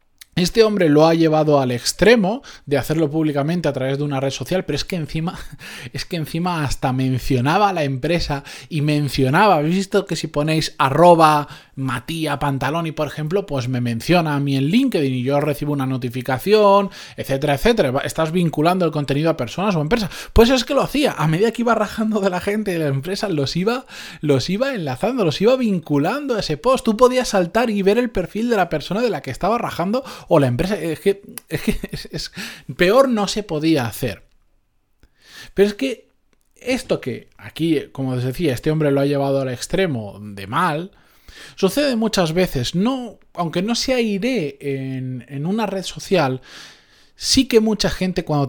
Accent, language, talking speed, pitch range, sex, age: Spanish, Spanish, 185 wpm, 140-200 Hz, male, 20-39